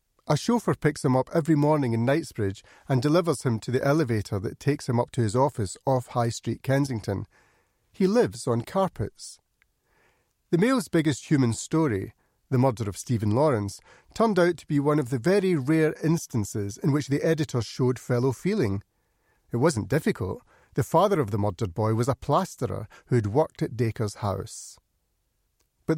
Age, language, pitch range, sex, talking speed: 40-59, English, 115-155 Hz, male, 175 wpm